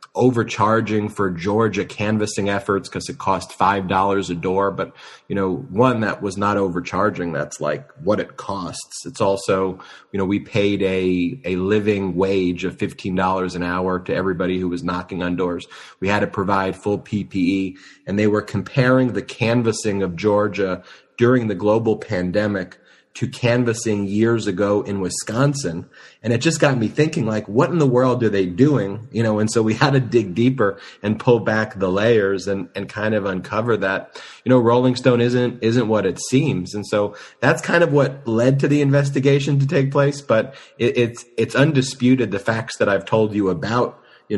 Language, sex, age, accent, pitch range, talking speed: English, male, 30-49, American, 95-120 Hz, 185 wpm